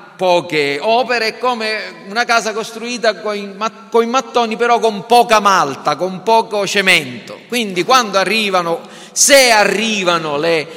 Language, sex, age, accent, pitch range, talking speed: Italian, male, 40-59, native, 150-225 Hz, 125 wpm